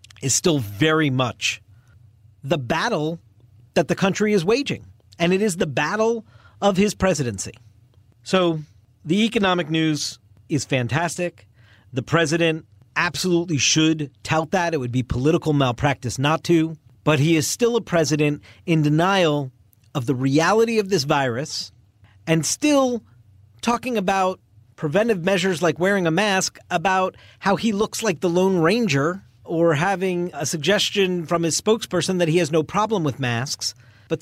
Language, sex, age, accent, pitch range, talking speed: English, male, 40-59, American, 120-175 Hz, 150 wpm